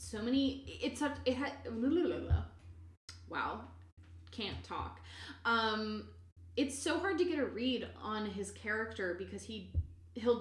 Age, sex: 20-39, female